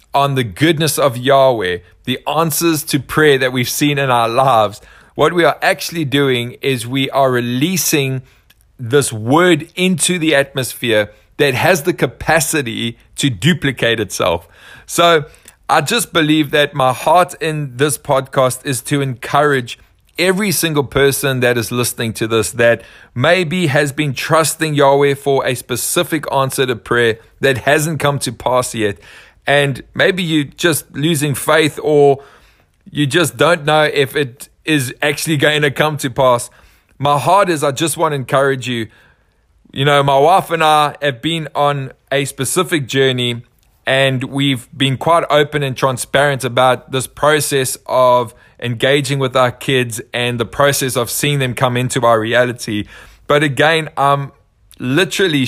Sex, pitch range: male, 125-150 Hz